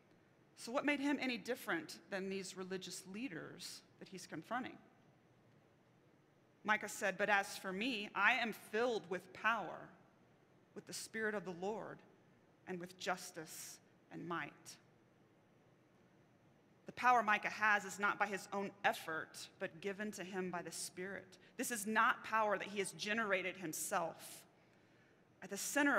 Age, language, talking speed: 30-49, English, 150 wpm